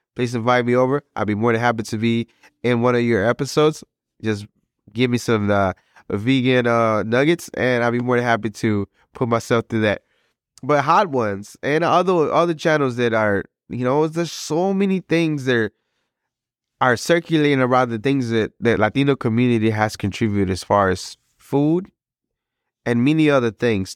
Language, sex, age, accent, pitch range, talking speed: English, male, 20-39, American, 105-125 Hz, 180 wpm